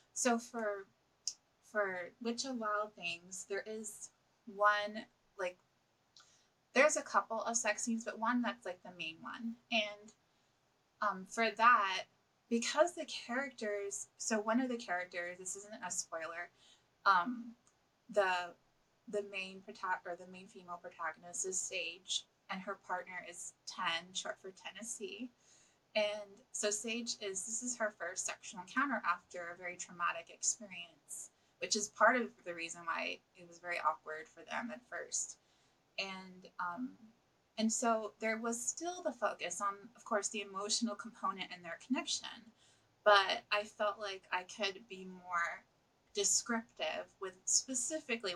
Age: 20-39